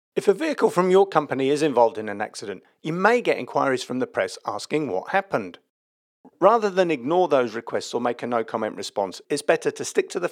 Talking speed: 220 wpm